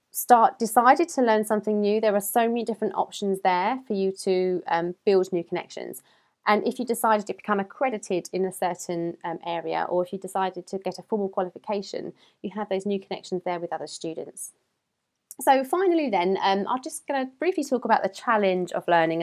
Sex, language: female, English